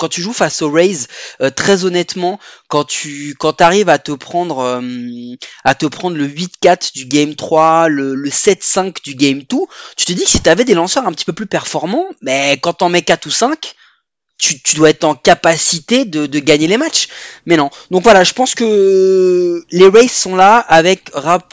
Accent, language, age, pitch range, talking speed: French, French, 20-39, 150-190 Hz, 210 wpm